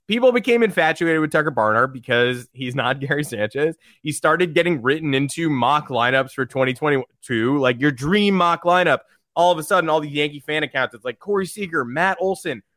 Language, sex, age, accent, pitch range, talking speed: English, male, 20-39, American, 130-180 Hz, 190 wpm